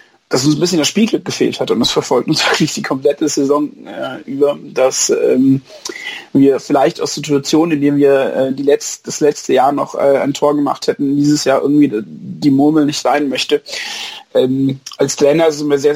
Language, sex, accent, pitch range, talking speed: German, male, German, 140-170 Hz, 205 wpm